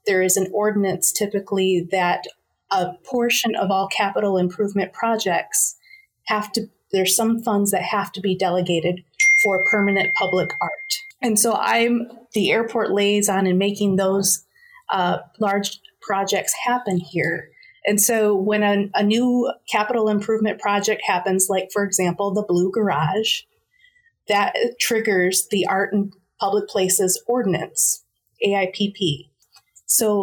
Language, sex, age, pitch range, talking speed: English, female, 30-49, 190-220 Hz, 135 wpm